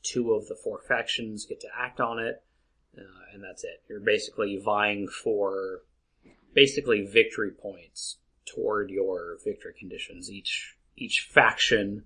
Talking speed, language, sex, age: 140 wpm, English, male, 30-49